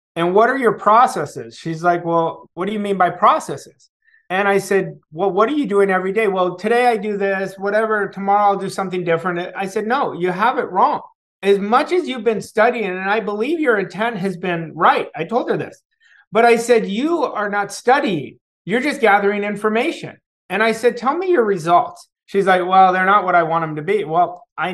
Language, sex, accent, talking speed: English, male, American, 220 wpm